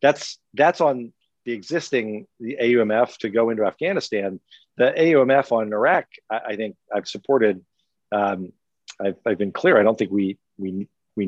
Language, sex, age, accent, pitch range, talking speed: English, male, 50-69, American, 105-135 Hz, 165 wpm